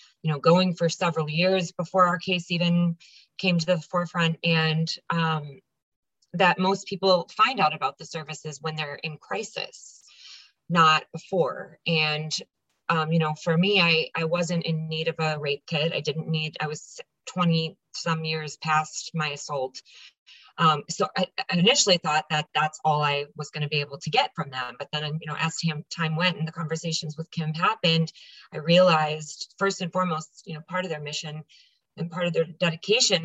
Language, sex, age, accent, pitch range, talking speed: English, female, 20-39, American, 155-180 Hz, 190 wpm